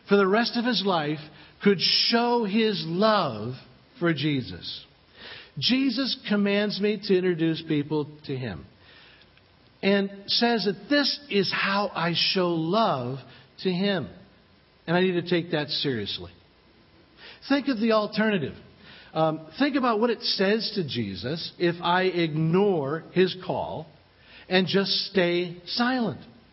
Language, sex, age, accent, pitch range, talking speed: English, male, 50-69, American, 160-215 Hz, 135 wpm